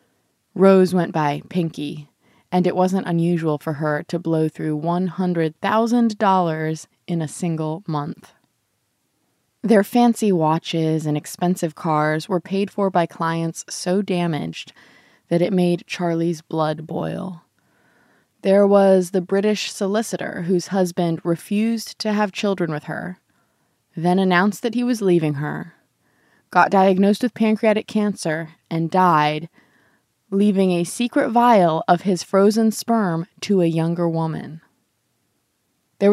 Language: English